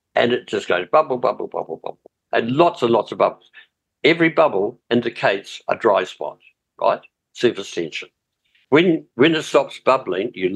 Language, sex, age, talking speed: English, male, 60-79, 165 wpm